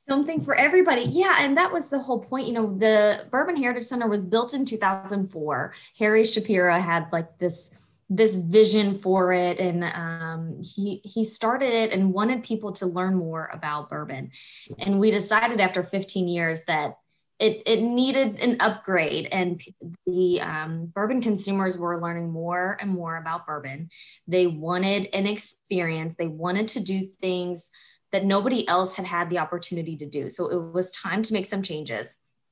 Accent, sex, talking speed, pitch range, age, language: American, female, 170 wpm, 175-220 Hz, 20-39, English